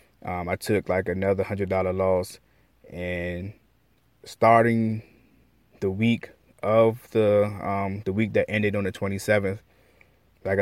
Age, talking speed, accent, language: 20-39, 135 wpm, American, English